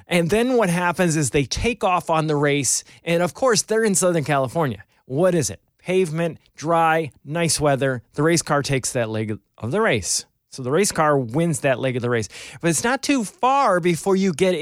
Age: 30-49